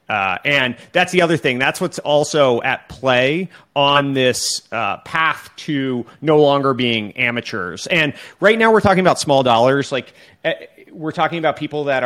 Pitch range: 120-145 Hz